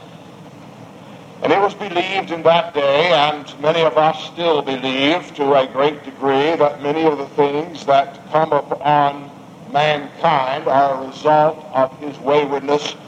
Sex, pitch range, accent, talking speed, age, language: male, 140-160 Hz, American, 145 wpm, 60-79, English